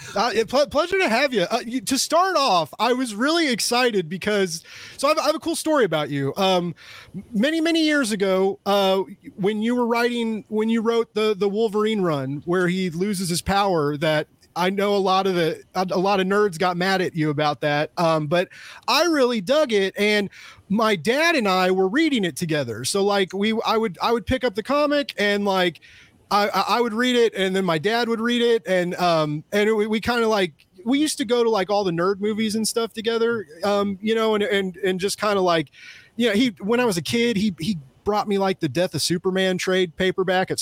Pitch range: 175-235 Hz